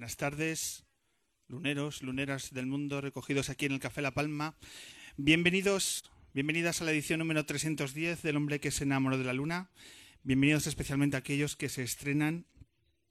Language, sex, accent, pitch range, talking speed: Spanish, male, Spanish, 125-150 Hz, 160 wpm